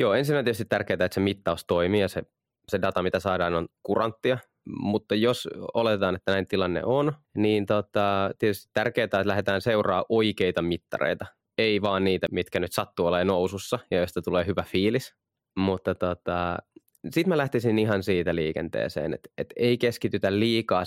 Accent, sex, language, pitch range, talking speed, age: native, male, Finnish, 90-110 Hz, 165 wpm, 20-39